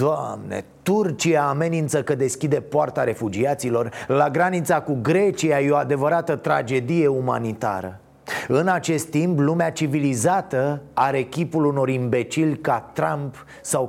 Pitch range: 130-165 Hz